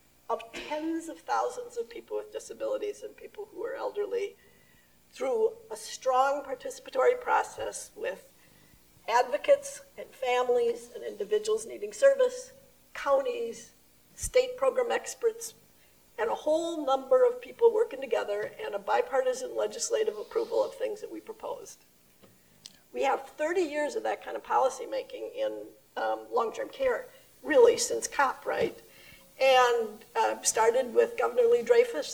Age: 50-69